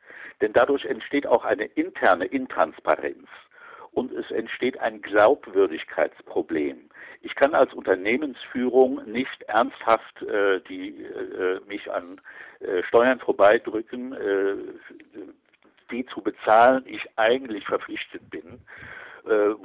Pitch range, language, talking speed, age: 275-450 Hz, German, 105 wpm, 60-79